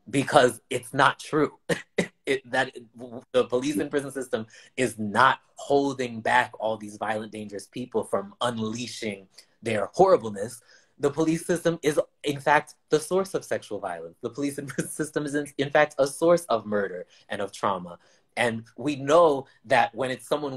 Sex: male